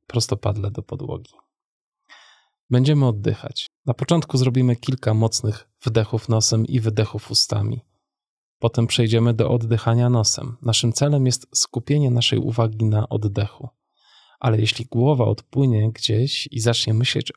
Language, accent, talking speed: Polish, native, 125 wpm